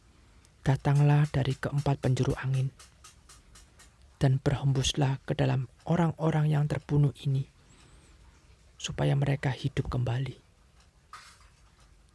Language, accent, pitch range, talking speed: Indonesian, native, 115-170 Hz, 85 wpm